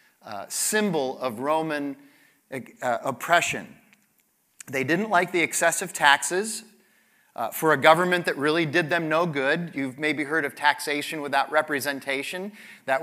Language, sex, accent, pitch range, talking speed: English, male, American, 145-195 Hz, 140 wpm